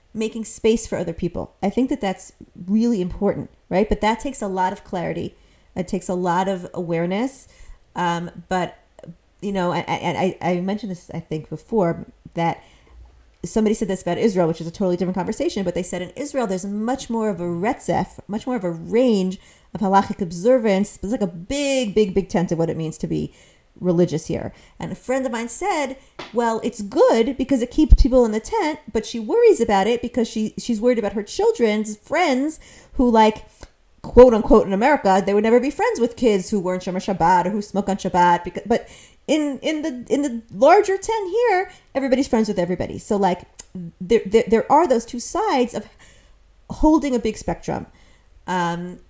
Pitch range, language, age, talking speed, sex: 185-245 Hz, English, 40-59, 200 wpm, female